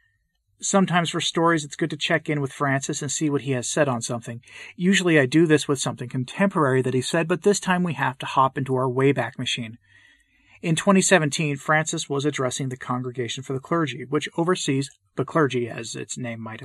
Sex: male